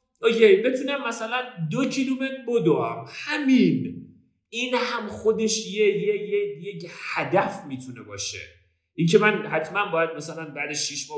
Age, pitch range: 40-59, 140-220 Hz